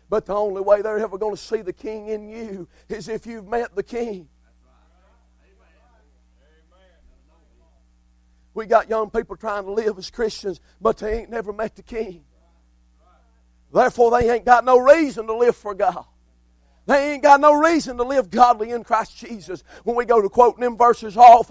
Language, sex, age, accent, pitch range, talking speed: English, male, 50-69, American, 215-285 Hz, 180 wpm